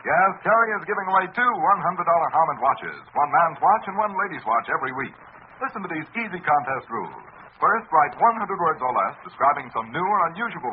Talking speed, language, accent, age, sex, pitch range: 195 wpm, English, American, 60-79, male, 150-210 Hz